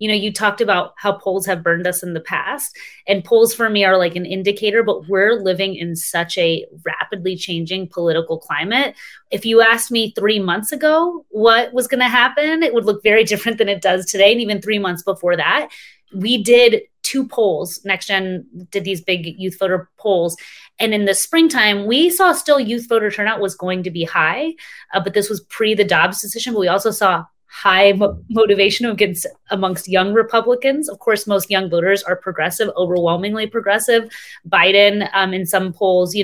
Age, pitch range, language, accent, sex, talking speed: 30-49, 175-220 Hz, English, American, female, 195 wpm